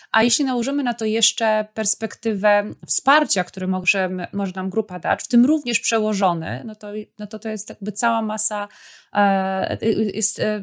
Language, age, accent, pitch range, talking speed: Polish, 20-39, native, 185-215 Hz, 160 wpm